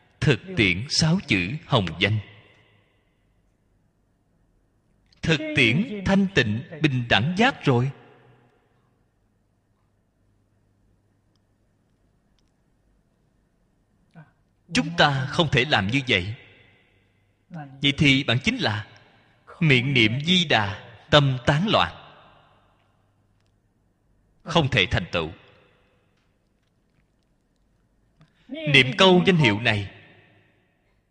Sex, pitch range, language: male, 100-145 Hz, Vietnamese